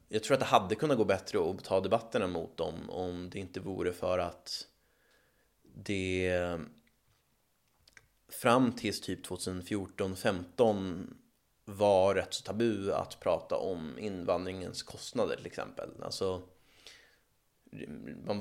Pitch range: 90-105 Hz